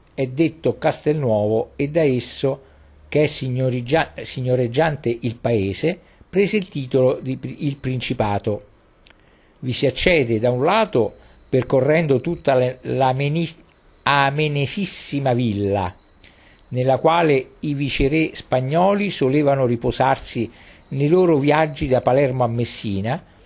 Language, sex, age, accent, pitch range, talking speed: Italian, male, 50-69, native, 120-160 Hz, 115 wpm